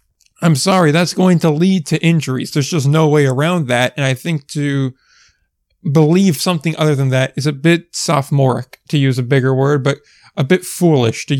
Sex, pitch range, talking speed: male, 135-165 Hz, 195 wpm